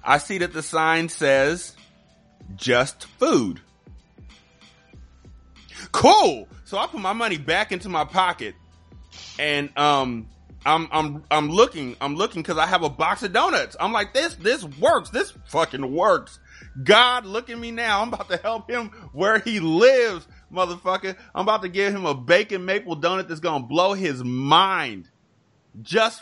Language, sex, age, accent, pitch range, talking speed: English, male, 30-49, American, 135-180 Hz, 160 wpm